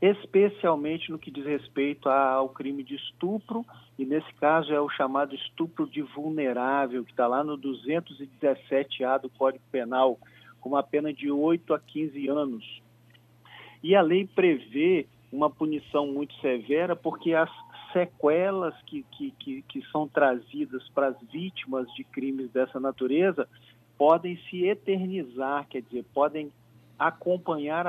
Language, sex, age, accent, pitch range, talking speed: Portuguese, male, 50-69, Brazilian, 135-165 Hz, 135 wpm